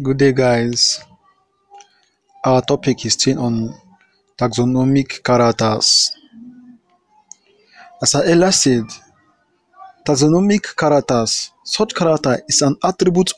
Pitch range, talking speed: 140-215 Hz, 90 wpm